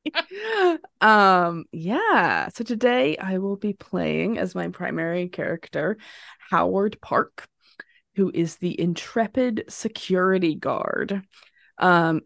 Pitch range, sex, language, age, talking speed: 175-225 Hz, female, English, 20-39, 105 wpm